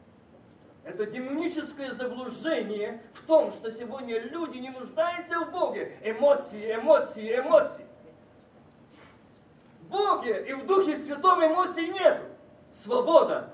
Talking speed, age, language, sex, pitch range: 105 wpm, 40-59, Russian, male, 230-310 Hz